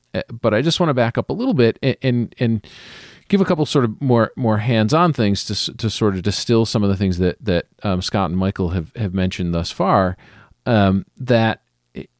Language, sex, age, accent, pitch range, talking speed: English, male, 40-59, American, 95-120 Hz, 215 wpm